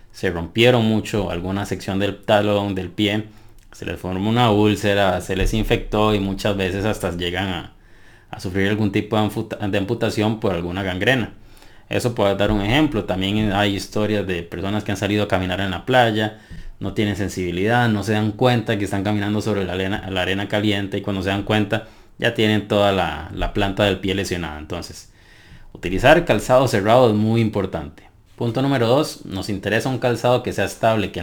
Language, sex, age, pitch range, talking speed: Spanish, male, 30-49, 95-110 Hz, 185 wpm